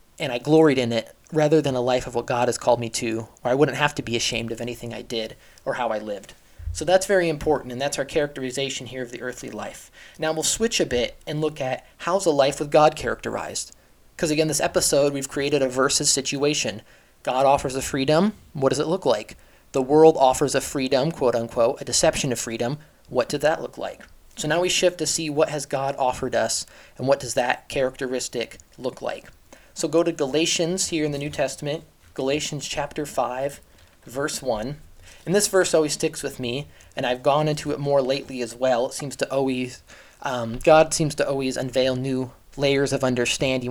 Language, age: English, 20-39